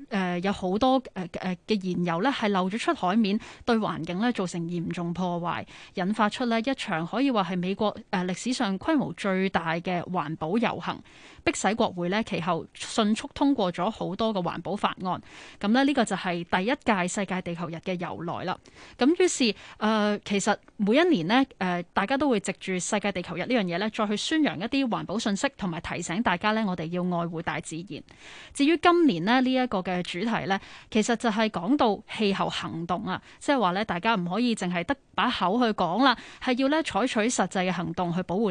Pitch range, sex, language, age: 180-240 Hz, female, Chinese, 20-39